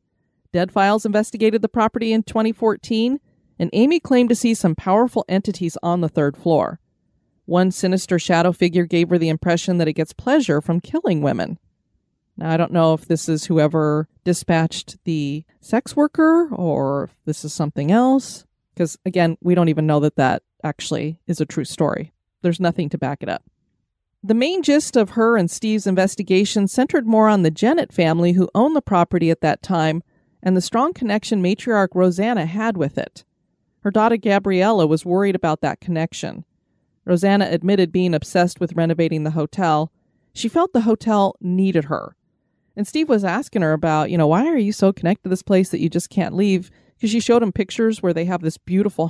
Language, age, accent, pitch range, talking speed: English, 30-49, American, 165-220 Hz, 190 wpm